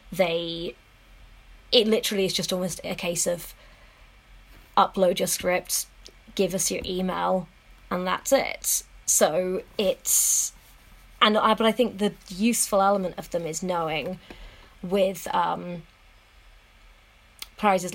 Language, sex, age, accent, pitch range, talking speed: English, female, 20-39, British, 180-205 Hz, 120 wpm